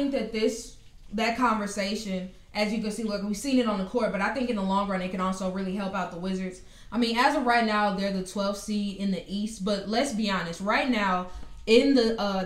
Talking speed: 250 wpm